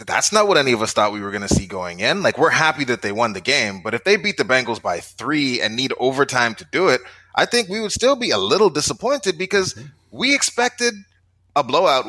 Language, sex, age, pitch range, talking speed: English, male, 20-39, 115-185 Hz, 250 wpm